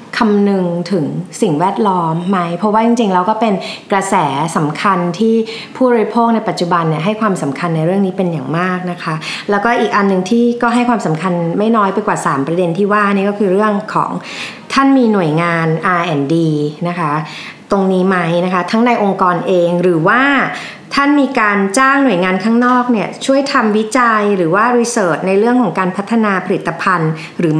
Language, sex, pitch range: Thai, female, 180-235 Hz